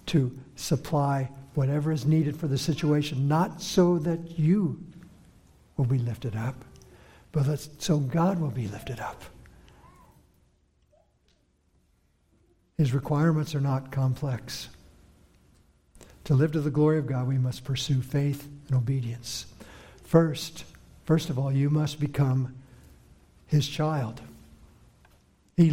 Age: 60-79